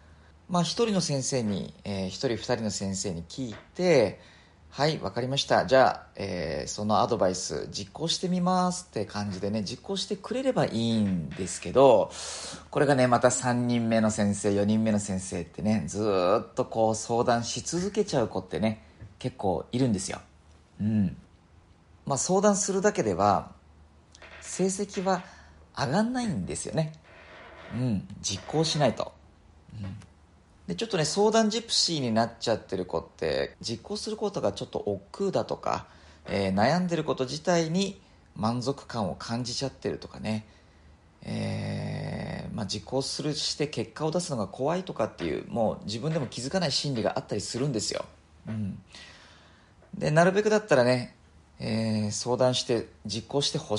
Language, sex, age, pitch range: Japanese, male, 40-59, 100-160 Hz